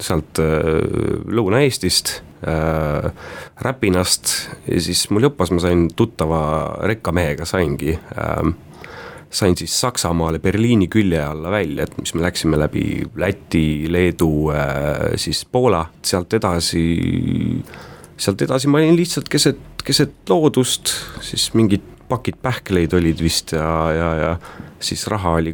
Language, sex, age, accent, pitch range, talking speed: English, male, 30-49, Finnish, 85-115 Hz, 125 wpm